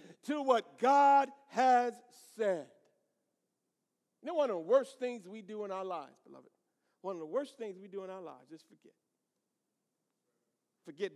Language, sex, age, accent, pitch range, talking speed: English, male, 50-69, American, 165-230 Hz, 165 wpm